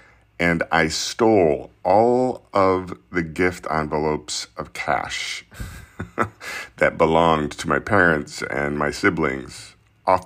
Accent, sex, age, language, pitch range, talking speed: American, male, 50-69, English, 75-100 Hz, 110 wpm